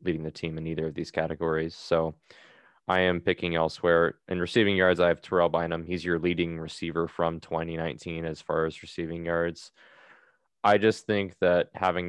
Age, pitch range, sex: 20-39, 80-90 Hz, male